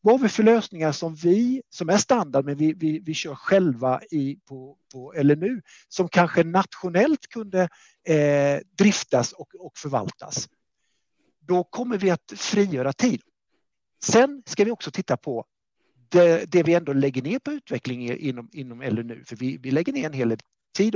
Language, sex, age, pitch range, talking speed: Swedish, male, 50-69, 135-200 Hz, 175 wpm